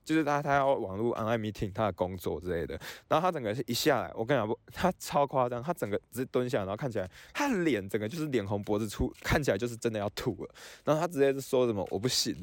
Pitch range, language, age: 110-140 Hz, Chinese, 20-39